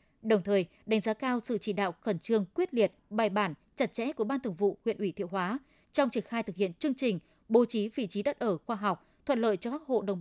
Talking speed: 265 wpm